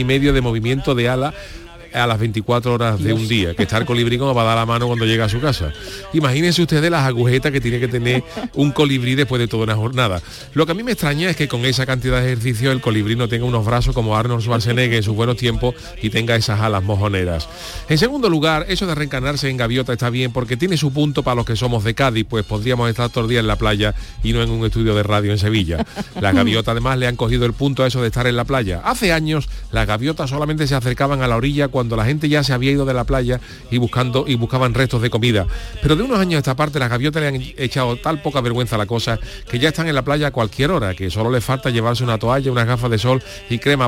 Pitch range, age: 115-140 Hz, 40-59